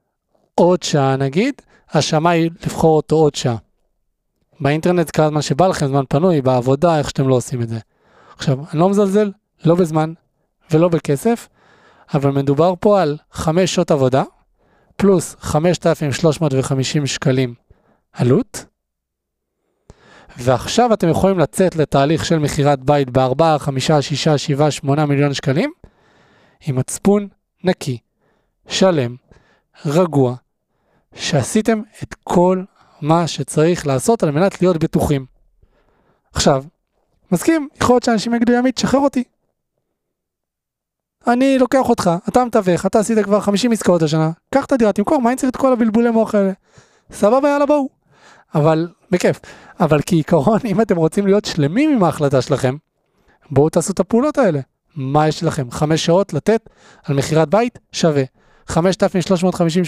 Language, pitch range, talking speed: Hebrew, 145-200 Hz, 140 wpm